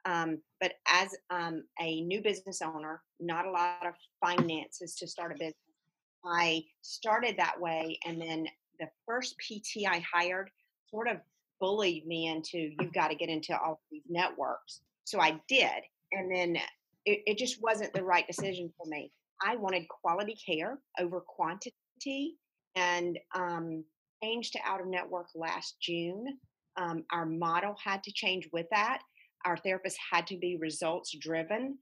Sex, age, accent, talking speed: female, 40-59, American, 160 wpm